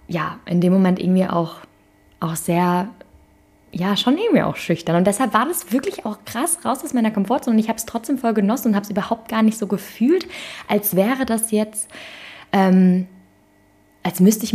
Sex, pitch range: female, 165-195 Hz